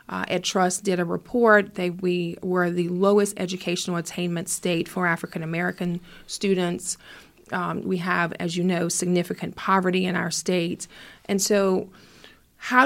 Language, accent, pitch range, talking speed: English, American, 175-205 Hz, 150 wpm